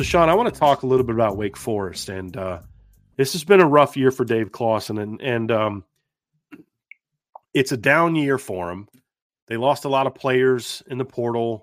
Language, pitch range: English, 110-130 Hz